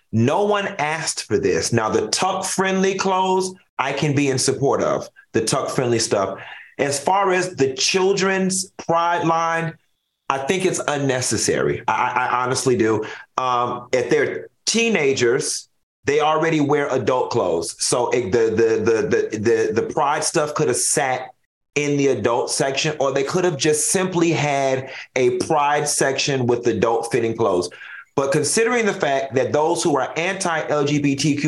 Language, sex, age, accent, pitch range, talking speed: English, male, 30-49, American, 135-190 Hz, 155 wpm